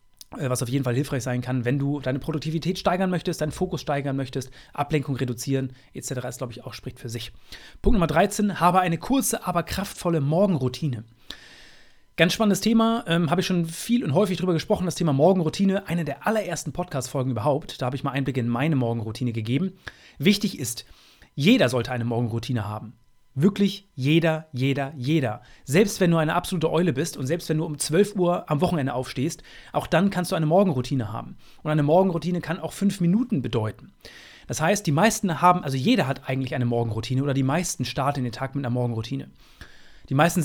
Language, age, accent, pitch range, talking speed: German, 30-49, German, 130-180 Hz, 190 wpm